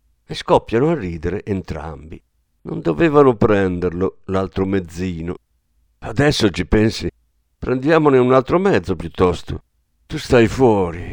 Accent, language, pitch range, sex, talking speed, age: native, Italian, 85-130 Hz, male, 115 wpm, 50-69